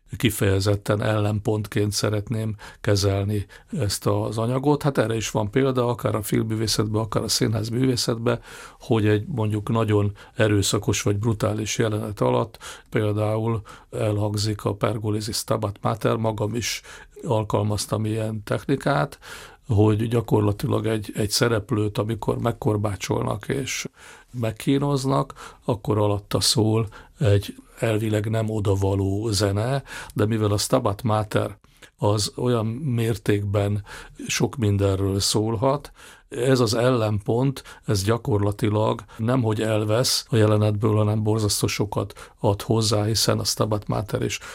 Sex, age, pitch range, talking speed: male, 50-69, 105-115 Hz, 115 wpm